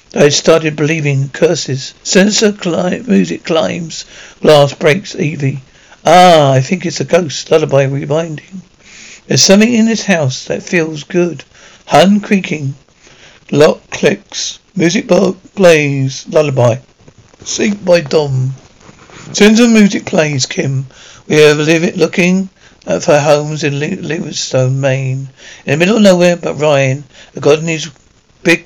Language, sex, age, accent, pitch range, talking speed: English, male, 60-79, British, 140-185 Hz, 140 wpm